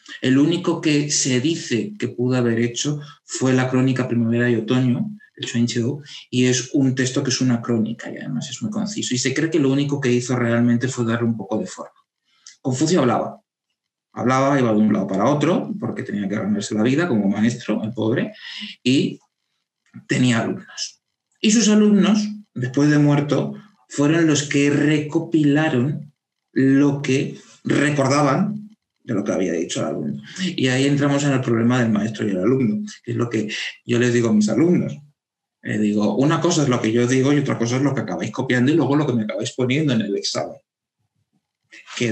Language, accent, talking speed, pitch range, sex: Spanish, Spanish, 195 wpm, 120-145 Hz, male